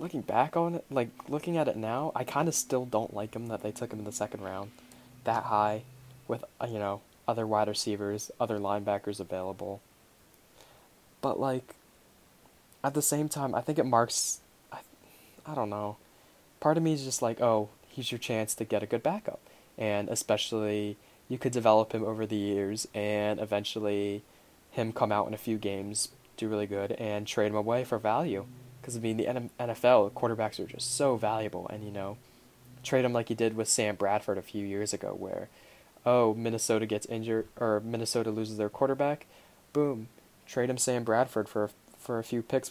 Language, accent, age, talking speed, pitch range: English, American, 10-29, 195 wpm, 105-125 Hz